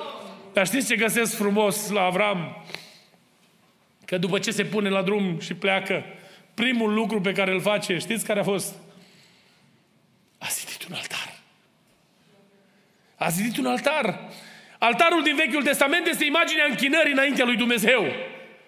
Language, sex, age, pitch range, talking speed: Romanian, male, 30-49, 210-300 Hz, 140 wpm